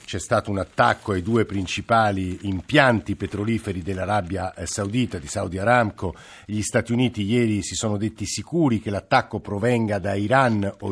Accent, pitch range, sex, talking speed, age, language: native, 95-115 Hz, male, 155 wpm, 50-69, Italian